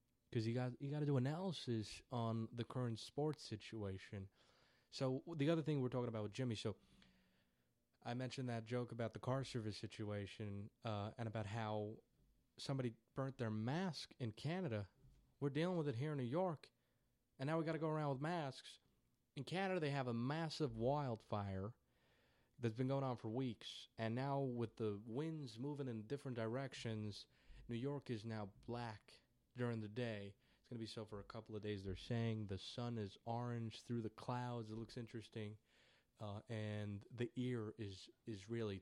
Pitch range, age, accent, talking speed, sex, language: 105-130 Hz, 20-39, American, 180 wpm, male, English